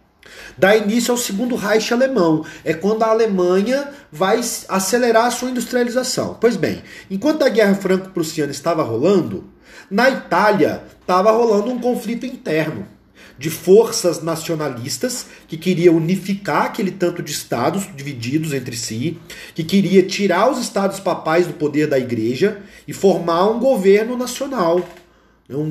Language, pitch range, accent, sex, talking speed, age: Portuguese, 155-210 Hz, Brazilian, male, 140 wpm, 40-59